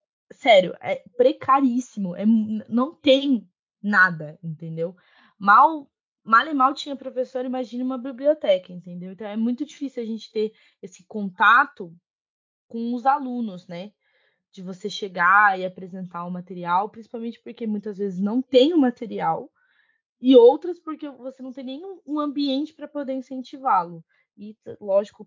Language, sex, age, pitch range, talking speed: Portuguese, female, 20-39, 195-255 Hz, 140 wpm